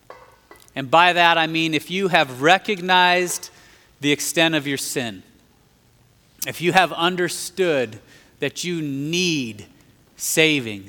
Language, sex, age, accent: English, male, 30-49, American